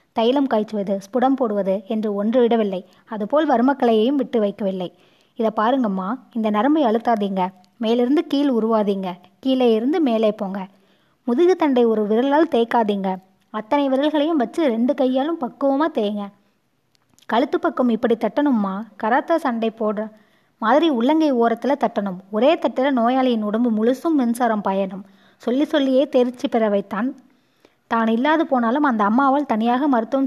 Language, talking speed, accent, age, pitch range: Tamil, 125 wpm, native, 20-39, 215-265 Hz